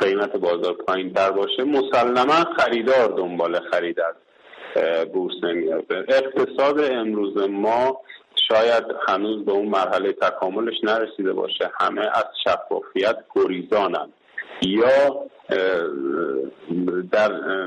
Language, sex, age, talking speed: Persian, male, 50-69, 95 wpm